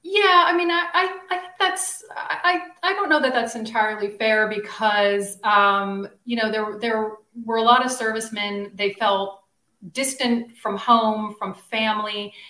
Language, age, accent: English, 40-59, American